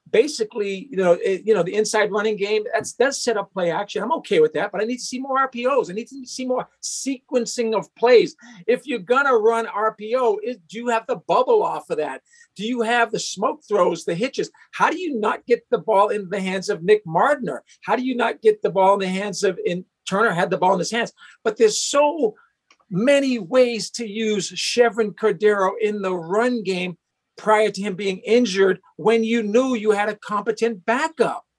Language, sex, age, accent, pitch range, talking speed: English, male, 50-69, American, 195-250 Hz, 220 wpm